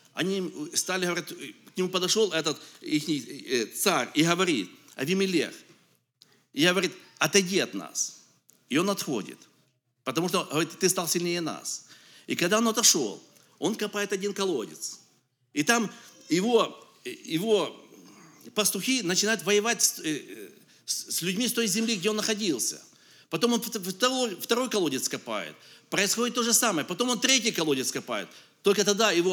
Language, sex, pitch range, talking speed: English, male, 175-225 Hz, 135 wpm